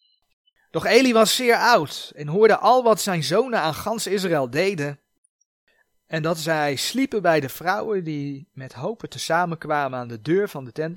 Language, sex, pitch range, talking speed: Dutch, male, 130-175 Hz, 180 wpm